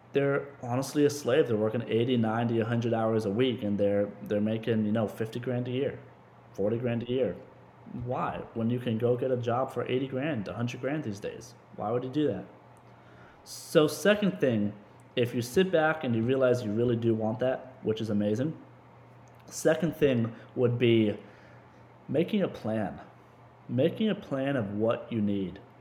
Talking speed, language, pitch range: 180 wpm, English, 115-145 Hz